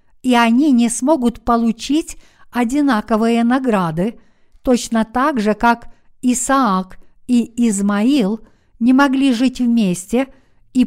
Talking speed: 105 wpm